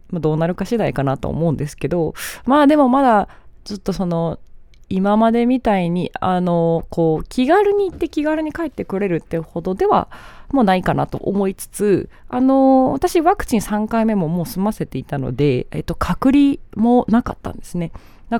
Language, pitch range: Japanese, 155-235 Hz